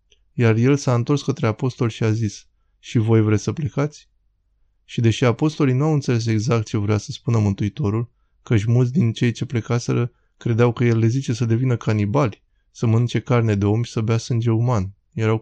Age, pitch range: 20-39, 105-130 Hz